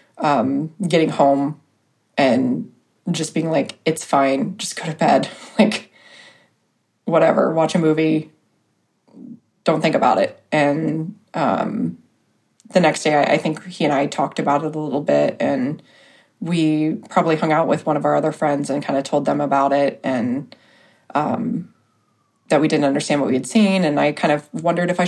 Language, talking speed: English, 175 wpm